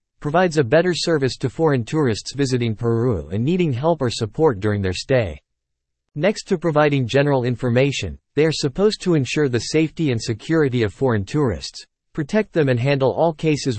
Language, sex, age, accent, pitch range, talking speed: English, male, 50-69, American, 115-155 Hz, 175 wpm